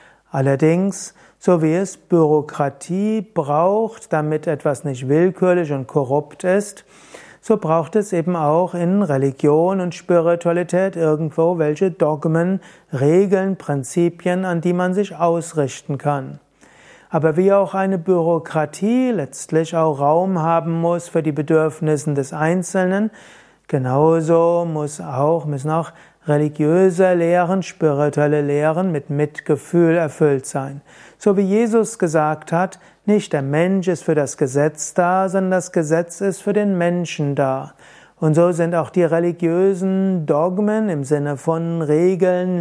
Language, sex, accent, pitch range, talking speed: German, male, German, 155-185 Hz, 130 wpm